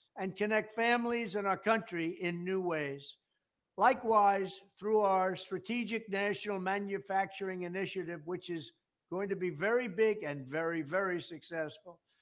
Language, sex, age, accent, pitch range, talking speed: English, male, 60-79, American, 180-210 Hz, 135 wpm